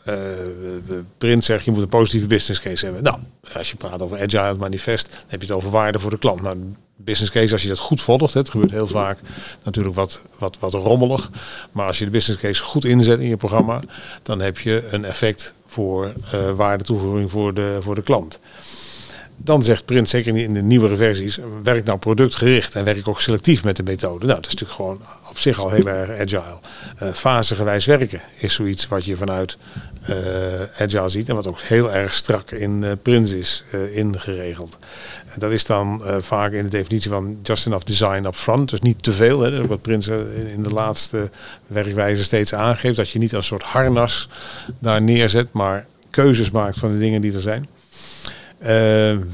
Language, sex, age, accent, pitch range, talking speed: Dutch, male, 50-69, Dutch, 100-115 Hz, 205 wpm